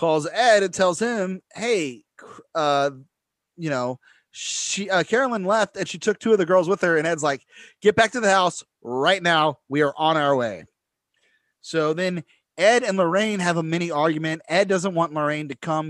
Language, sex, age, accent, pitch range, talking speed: English, male, 30-49, American, 150-190 Hz, 195 wpm